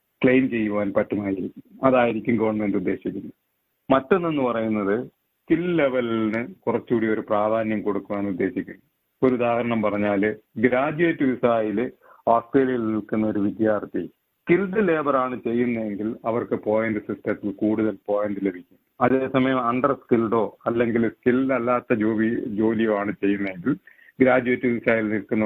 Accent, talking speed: native, 110 wpm